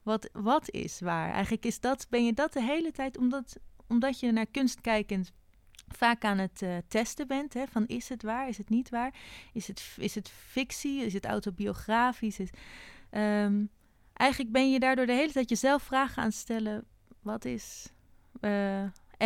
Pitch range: 190-235 Hz